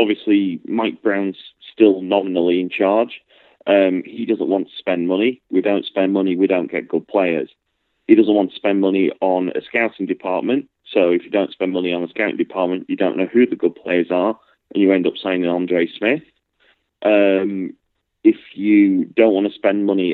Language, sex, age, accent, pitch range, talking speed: English, male, 30-49, British, 90-100 Hz, 195 wpm